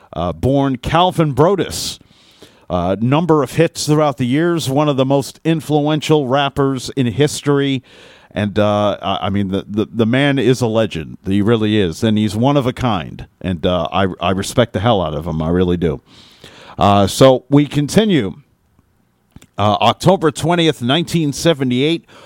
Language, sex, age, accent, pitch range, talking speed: English, male, 50-69, American, 100-145 Hz, 165 wpm